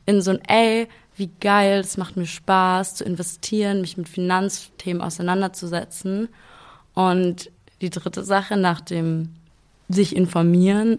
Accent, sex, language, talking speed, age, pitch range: German, female, German, 130 wpm, 20-39, 180-210 Hz